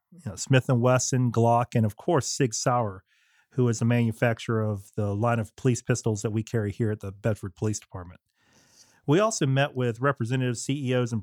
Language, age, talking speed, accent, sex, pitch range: English, 40-59, 185 wpm, American, male, 110-130 Hz